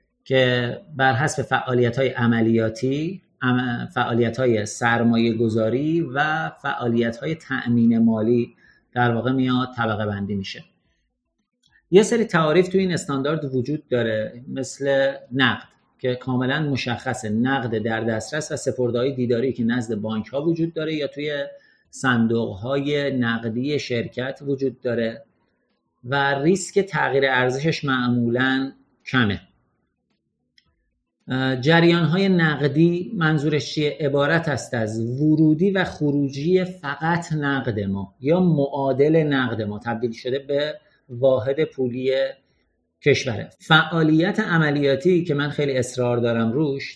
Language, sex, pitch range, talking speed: Persian, male, 120-150 Hz, 115 wpm